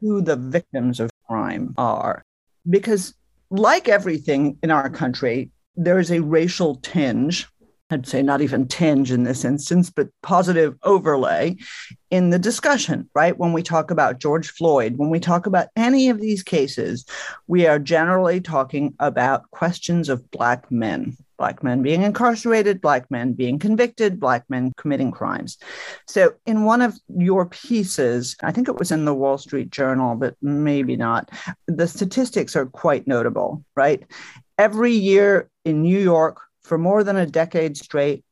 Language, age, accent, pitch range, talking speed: English, 50-69, American, 145-200 Hz, 160 wpm